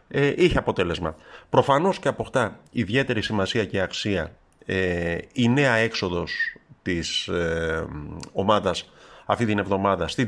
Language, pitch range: Greek, 95-125 Hz